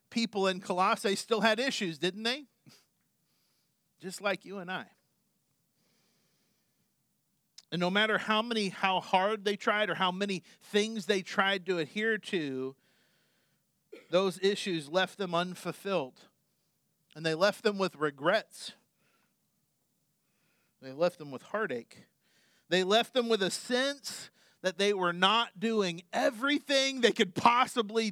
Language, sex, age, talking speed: English, male, 40-59, 130 wpm